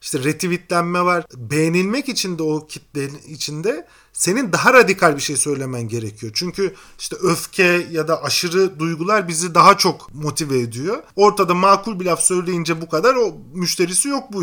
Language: Turkish